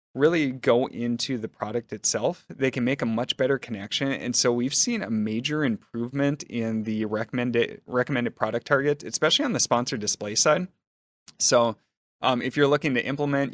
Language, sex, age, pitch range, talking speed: English, male, 30-49, 110-125 Hz, 175 wpm